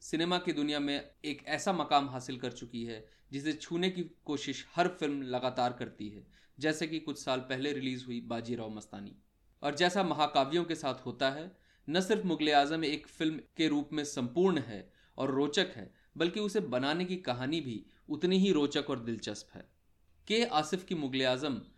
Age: 30-49